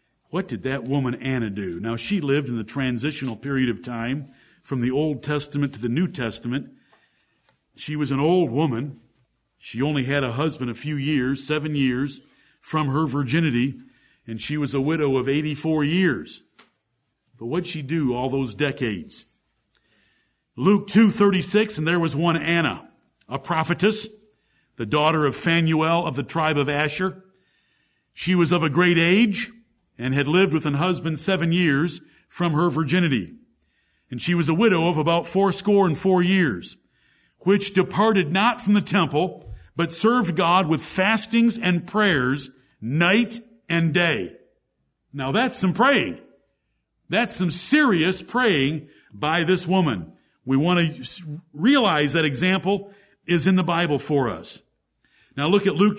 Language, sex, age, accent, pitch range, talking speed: English, male, 50-69, American, 140-190 Hz, 155 wpm